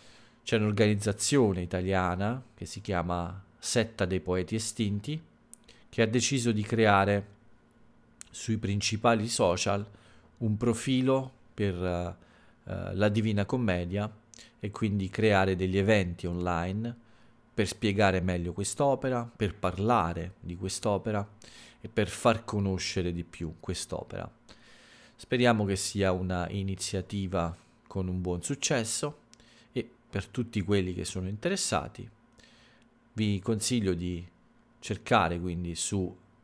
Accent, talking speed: native, 110 wpm